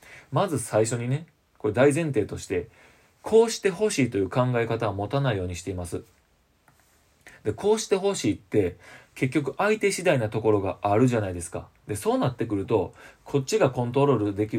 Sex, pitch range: male, 105-145 Hz